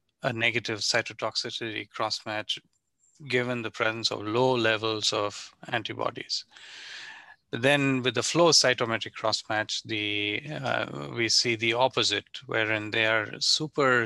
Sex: male